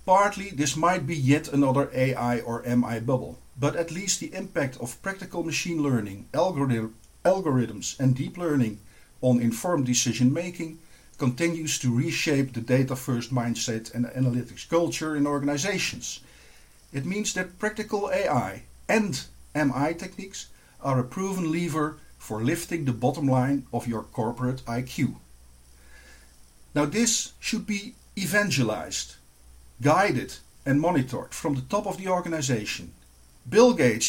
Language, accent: English, Dutch